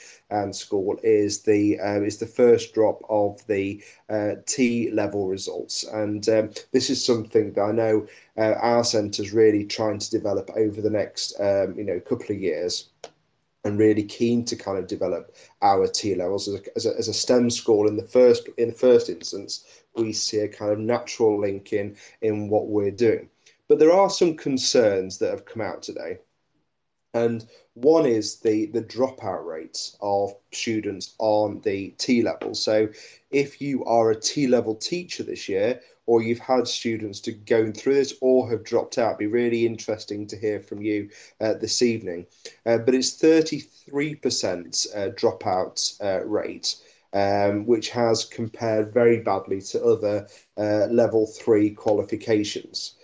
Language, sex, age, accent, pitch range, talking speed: English, male, 30-49, British, 105-130 Hz, 170 wpm